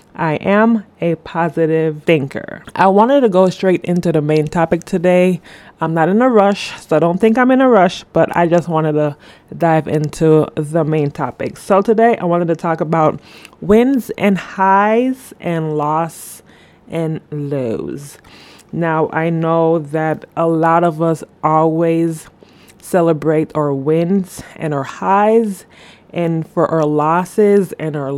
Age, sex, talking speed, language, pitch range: 20-39, female, 155 wpm, English, 160-200 Hz